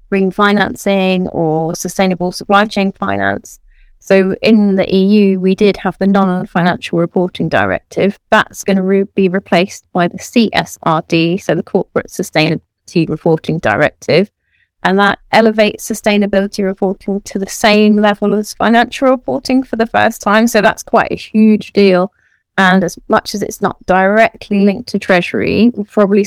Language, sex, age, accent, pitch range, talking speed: English, female, 30-49, British, 180-210 Hz, 150 wpm